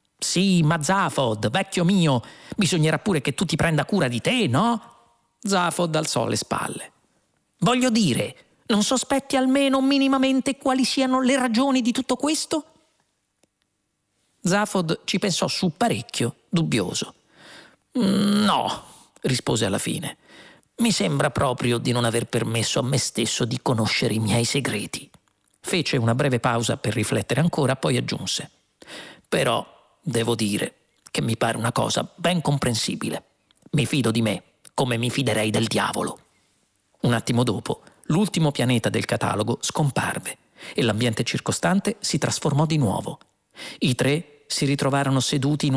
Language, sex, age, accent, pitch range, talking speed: Italian, male, 40-59, native, 120-190 Hz, 140 wpm